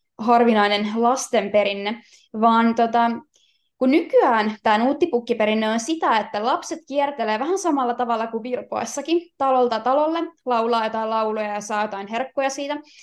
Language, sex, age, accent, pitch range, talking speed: Finnish, female, 20-39, native, 225-305 Hz, 135 wpm